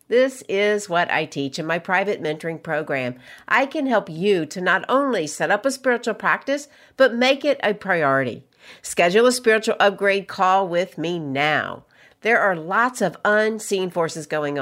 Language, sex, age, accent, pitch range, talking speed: English, female, 50-69, American, 160-225 Hz, 170 wpm